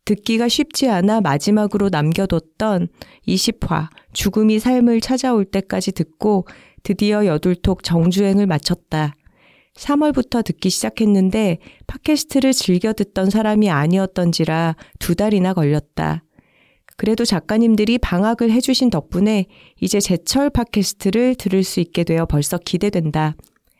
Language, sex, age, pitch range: Korean, female, 40-59, 175-220 Hz